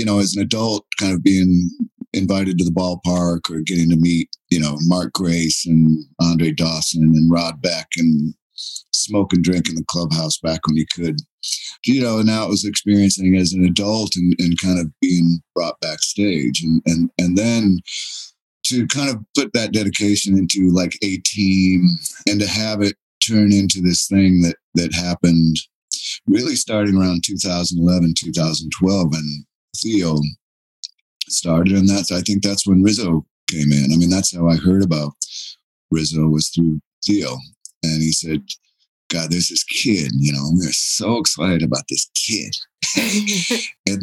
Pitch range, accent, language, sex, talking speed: 80-100 Hz, American, English, male, 170 wpm